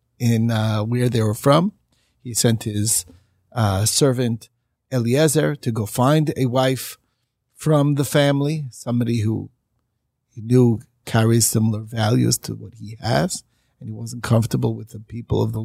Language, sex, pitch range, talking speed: English, male, 115-140 Hz, 155 wpm